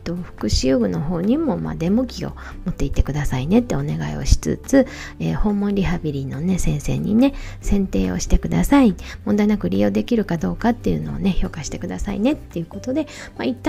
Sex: female